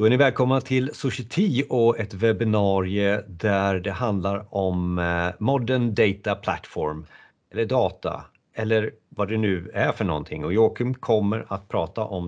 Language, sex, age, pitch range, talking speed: Swedish, male, 40-59, 90-110 Hz, 150 wpm